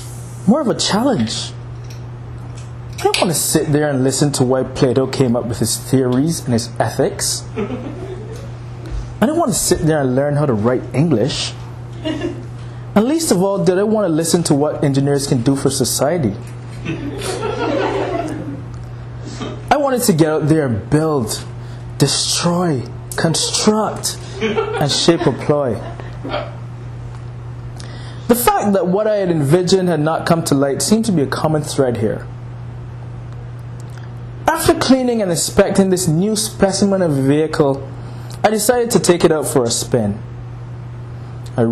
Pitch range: 120-155 Hz